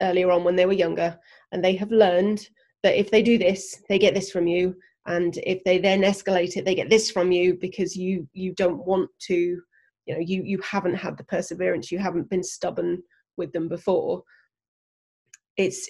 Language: English